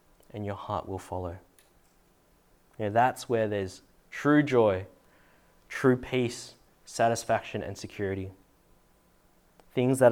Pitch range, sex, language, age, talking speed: 100-130 Hz, male, English, 20-39, 115 wpm